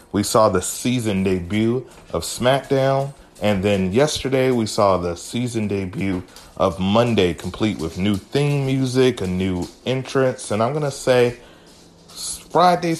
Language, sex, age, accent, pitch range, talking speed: English, male, 30-49, American, 90-115 Hz, 145 wpm